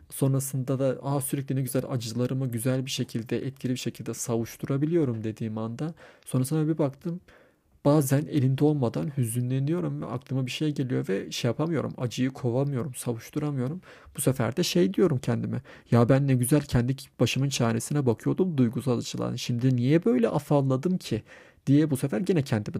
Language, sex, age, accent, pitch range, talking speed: Turkish, male, 40-59, native, 120-140 Hz, 155 wpm